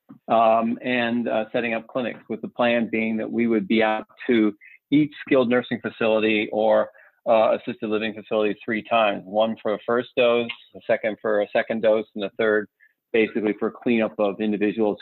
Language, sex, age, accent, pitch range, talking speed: English, male, 40-59, American, 105-120 Hz, 185 wpm